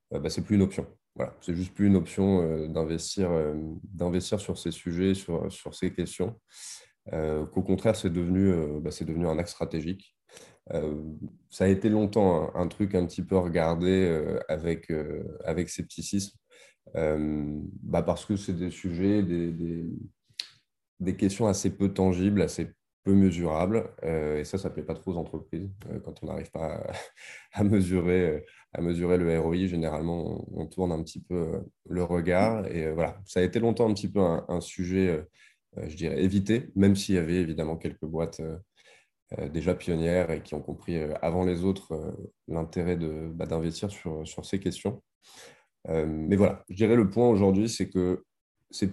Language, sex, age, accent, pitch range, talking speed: French, male, 20-39, French, 80-95 Hz, 190 wpm